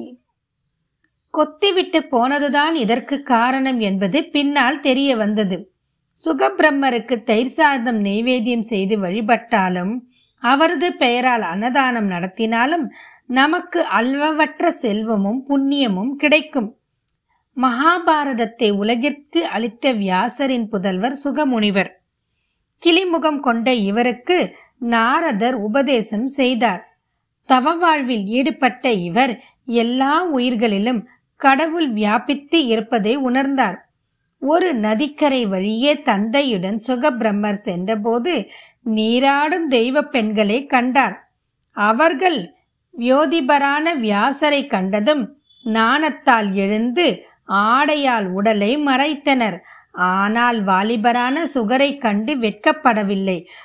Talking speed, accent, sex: 65 wpm, native, female